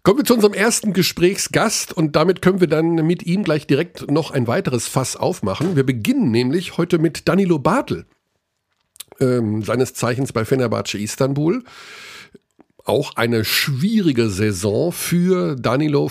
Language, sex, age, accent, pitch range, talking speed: German, male, 50-69, German, 110-155 Hz, 145 wpm